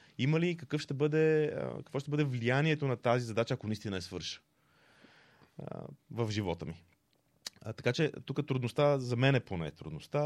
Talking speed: 165 wpm